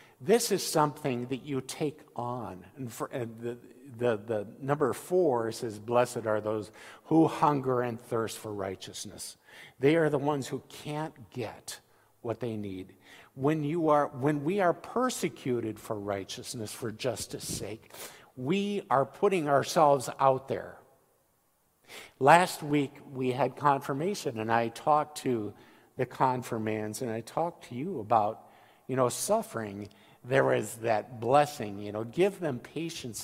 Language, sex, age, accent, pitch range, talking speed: English, male, 50-69, American, 115-145 Hz, 145 wpm